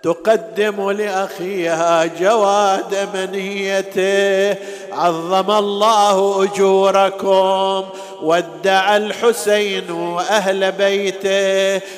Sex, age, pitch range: male, 50-69, 195-210 Hz